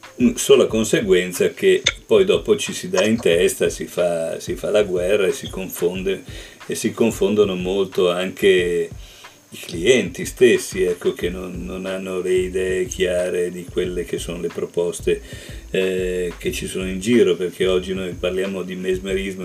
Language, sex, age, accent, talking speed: Italian, male, 50-69, native, 165 wpm